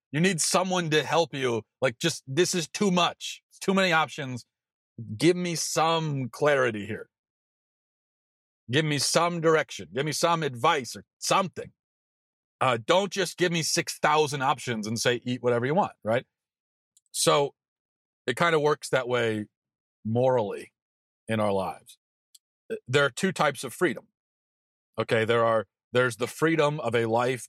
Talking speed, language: 155 wpm, English